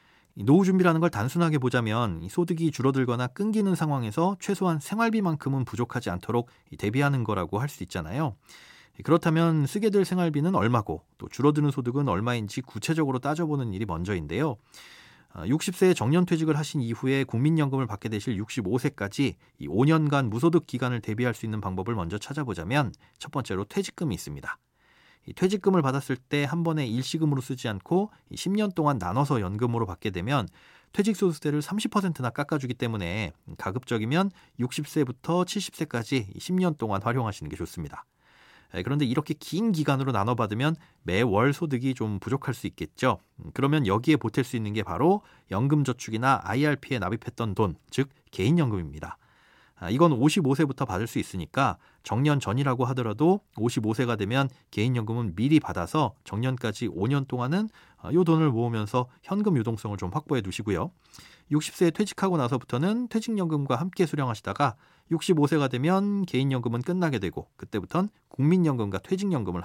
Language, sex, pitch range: Korean, male, 115-160 Hz